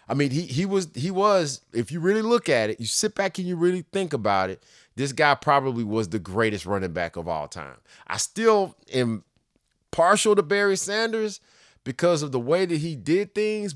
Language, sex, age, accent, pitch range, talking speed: English, male, 30-49, American, 105-145 Hz, 210 wpm